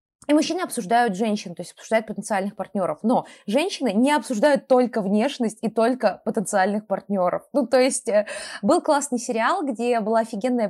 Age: 20-39